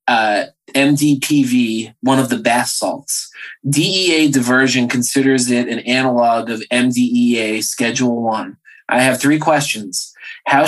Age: 20-39